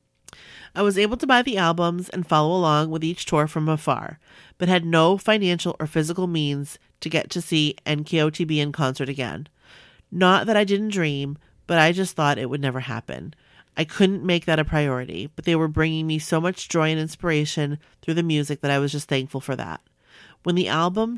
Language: English